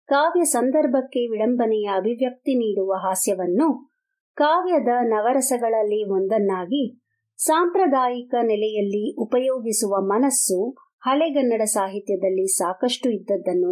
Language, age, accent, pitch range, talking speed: Kannada, 50-69, native, 205-280 Hz, 75 wpm